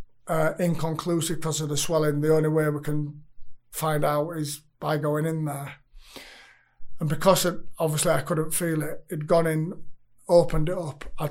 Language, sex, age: English, male, 30-49